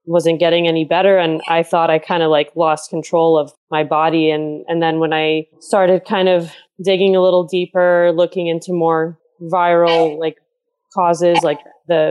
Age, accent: 20-39, American